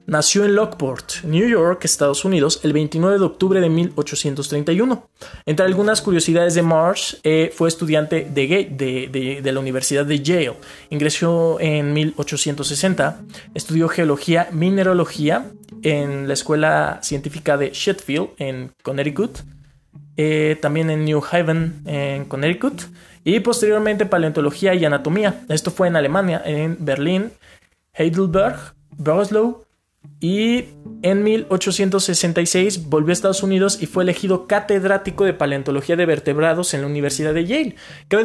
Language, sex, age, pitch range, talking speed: Spanish, male, 20-39, 150-195 Hz, 130 wpm